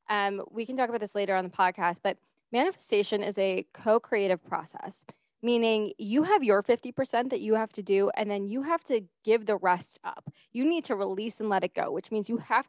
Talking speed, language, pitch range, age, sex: 220 wpm, English, 195-235 Hz, 20-39, female